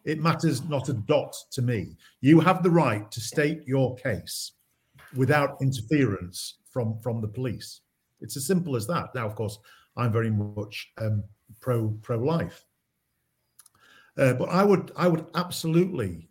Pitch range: 110-140 Hz